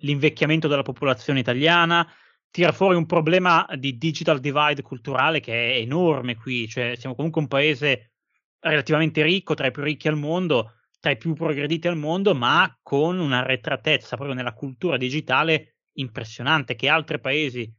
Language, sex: Italian, male